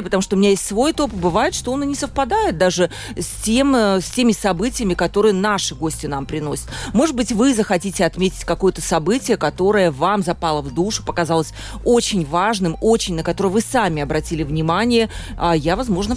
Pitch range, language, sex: 180-245 Hz, Russian, female